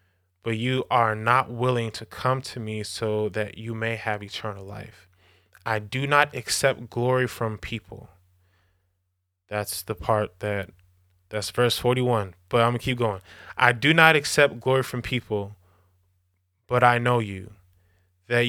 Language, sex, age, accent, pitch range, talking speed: English, male, 20-39, American, 95-125 Hz, 155 wpm